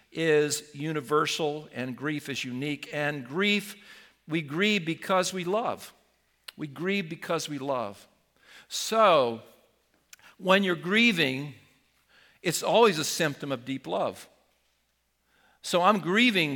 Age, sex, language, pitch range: 50-69, male, English, 130-175 Hz